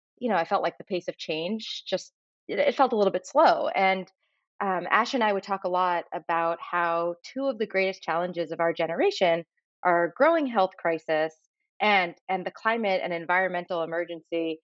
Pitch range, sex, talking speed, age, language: 175-255 Hz, female, 190 wpm, 30-49, English